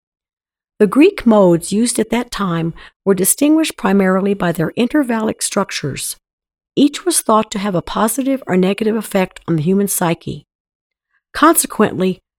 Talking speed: 140 wpm